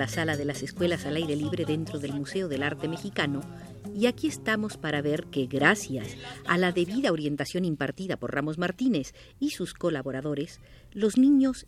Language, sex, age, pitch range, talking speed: Spanish, female, 50-69, 145-230 Hz, 175 wpm